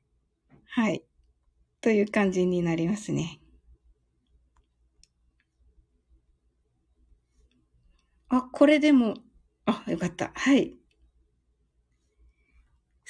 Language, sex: Japanese, female